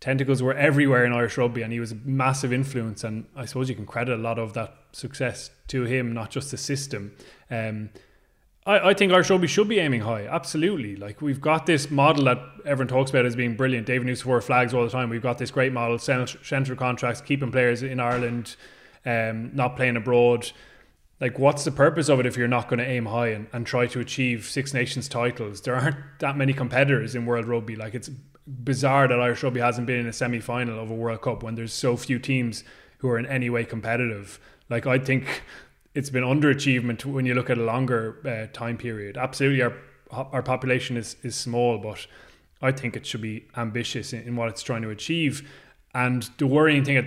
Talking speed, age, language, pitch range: 215 wpm, 20-39, English, 115-135 Hz